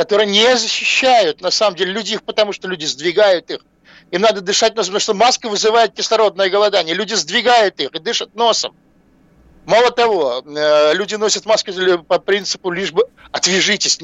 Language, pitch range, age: Russian, 180-230 Hz, 50-69